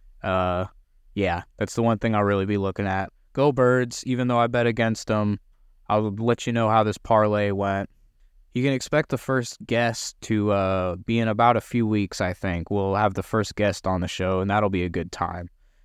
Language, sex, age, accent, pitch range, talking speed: English, male, 20-39, American, 95-120 Hz, 215 wpm